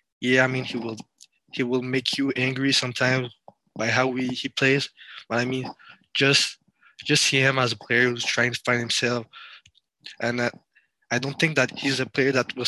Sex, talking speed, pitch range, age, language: male, 200 wpm, 115-130 Hz, 20-39, English